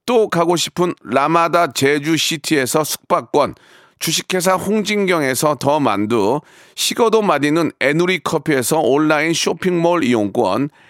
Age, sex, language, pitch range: 40-59, male, Korean, 155-205 Hz